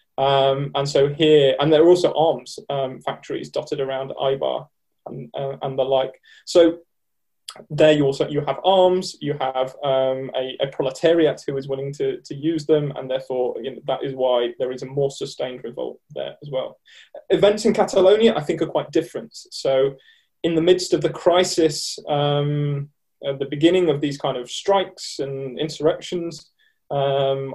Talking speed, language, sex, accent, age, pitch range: 175 wpm, English, male, British, 20-39, 135-165 Hz